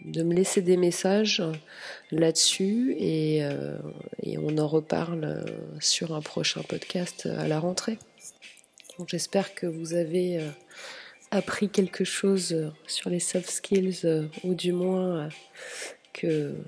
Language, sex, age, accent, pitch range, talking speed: French, female, 30-49, French, 160-185 Hz, 135 wpm